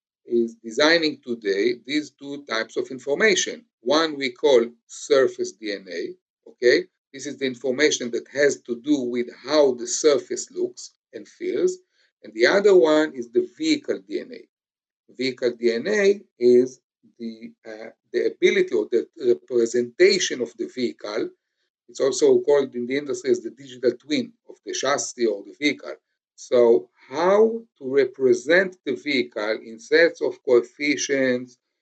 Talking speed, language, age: 145 wpm, English, 50-69